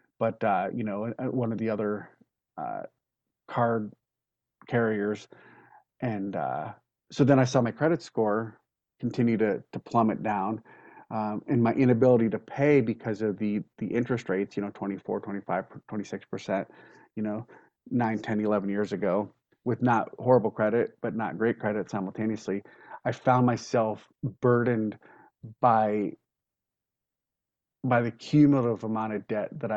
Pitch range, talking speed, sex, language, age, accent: 105-120 Hz, 140 wpm, male, English, 40-59, American